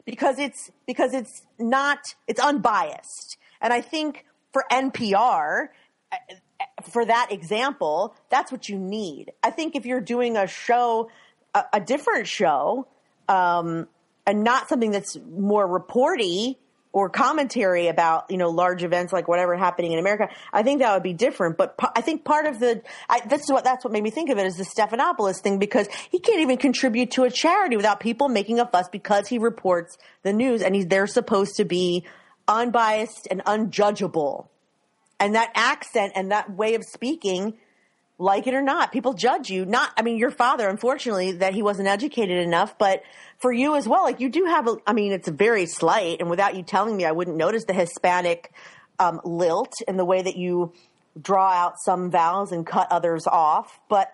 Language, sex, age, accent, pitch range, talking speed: English, female, 30-49, American, 185-250 Hz, 190 wpm